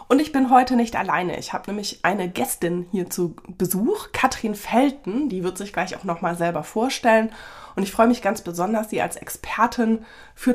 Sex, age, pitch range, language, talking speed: female, 20-39, 185-235 Hz, German, 195 wpm